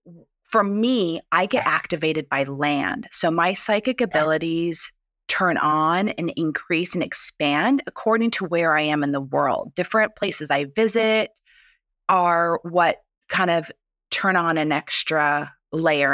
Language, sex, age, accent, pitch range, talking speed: English, female, 20-39, American, 155-200 Hz, 140 wpm